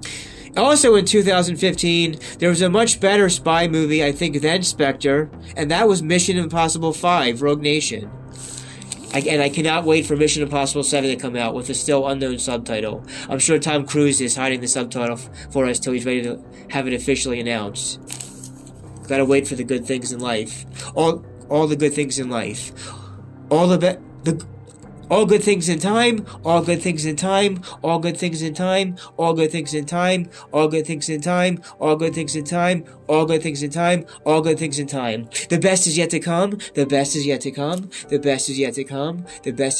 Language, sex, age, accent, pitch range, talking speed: English, male, 20-39, American, 130-165 Hz, 205 wpm